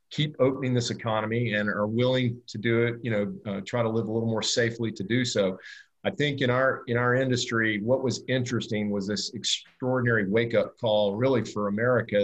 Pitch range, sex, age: 105-120 Hz, male, 50-69